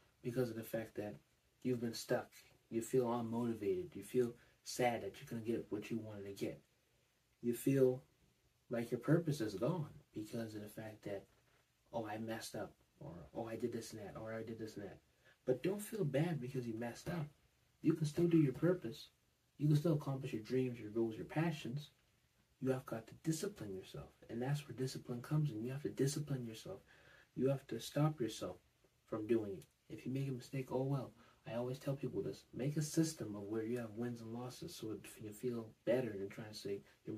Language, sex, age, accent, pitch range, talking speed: English, male, 30-49, American, 115-140 Hz, 215 wpm